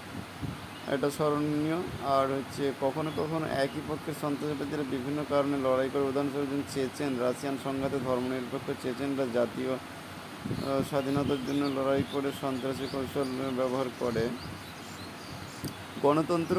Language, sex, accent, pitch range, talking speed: Bengali, male, native, 130-145 Hz, 80 wpm